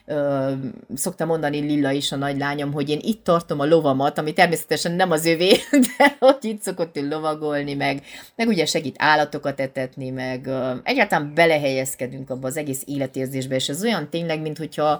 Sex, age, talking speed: female, 30-49, 170 wpm